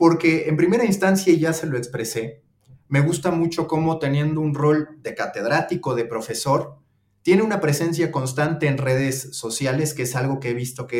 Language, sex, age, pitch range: Spanish, male, 30-49, 125-165 Hz